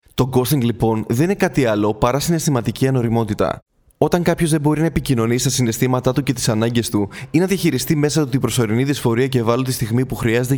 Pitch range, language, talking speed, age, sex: 115-150 Hz, Greek, 205 wpm, 20-39, male